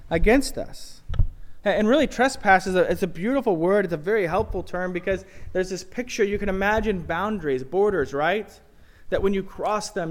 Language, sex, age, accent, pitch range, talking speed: English, male, 20-39, American, 120-190 Hz, 185 wpm